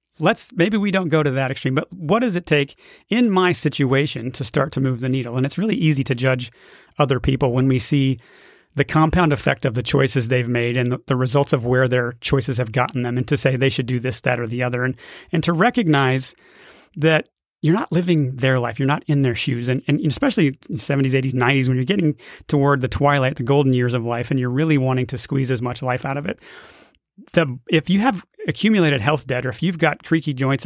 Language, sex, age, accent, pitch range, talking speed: English, male, 30-49, American, 130-165 Hz, 235 wpm